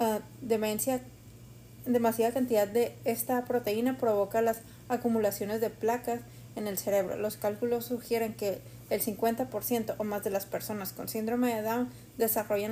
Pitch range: 205-235 Hz